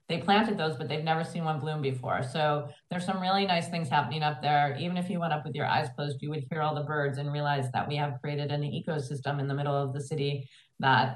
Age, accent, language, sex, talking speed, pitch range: 40-59, American, English, female, 265 wpm, 145-175 Hz